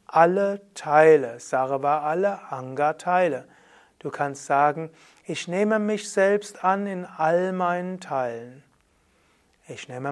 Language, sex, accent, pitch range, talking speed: German, male, German, 135-180 Hz, 115 wpm